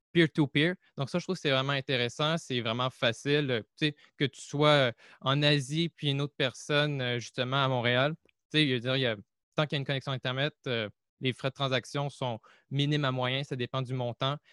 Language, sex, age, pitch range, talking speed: French, male, 20-39, 125-150 Hz, 200 wpm